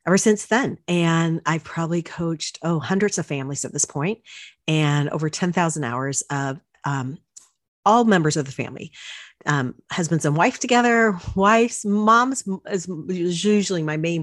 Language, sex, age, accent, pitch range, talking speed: English, female, 40-59, American, 150-180 Hz, 150 wpm